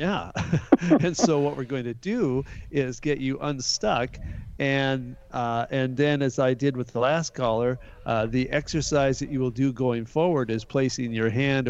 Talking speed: 185 wpm